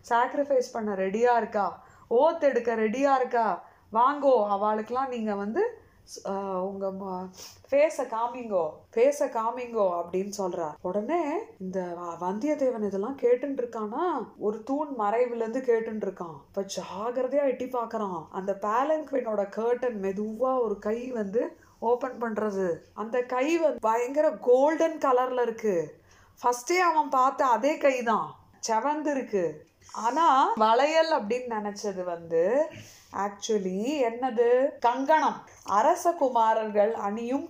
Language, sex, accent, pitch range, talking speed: Tamil, female, native, 205-275 Hz, 95 wpm